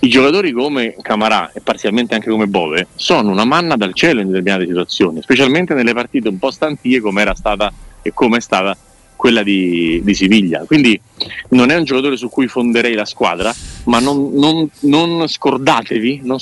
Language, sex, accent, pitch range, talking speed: Italian, male, native, 100-130 Hz, 185 wpm